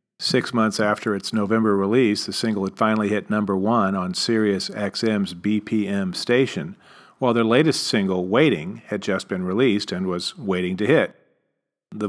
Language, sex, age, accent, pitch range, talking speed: English, male, 40-59, American, 95-115 Hz, 165 wpm